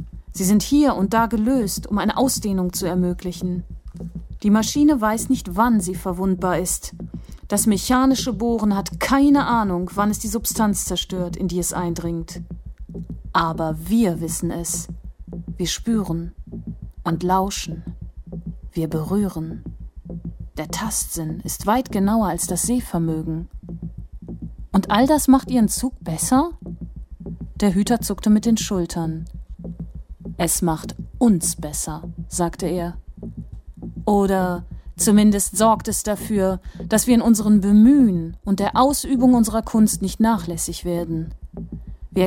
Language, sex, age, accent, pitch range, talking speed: German, female, 30-49, German, 175-225 Hz, 130 wpm